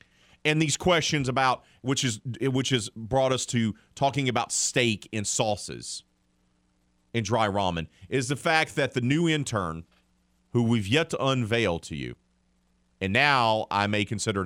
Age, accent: 40-59, American